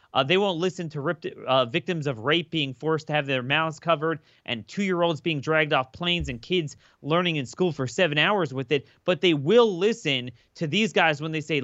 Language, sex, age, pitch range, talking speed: English, male, 30-49, 145-180 Hz, 220 wpm